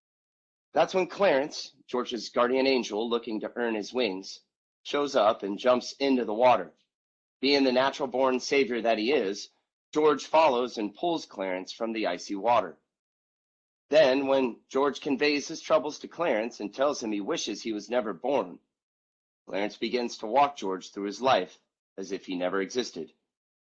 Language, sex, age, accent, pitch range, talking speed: Russian, male, 30-49, American, 105-150 Hz, 165 wpm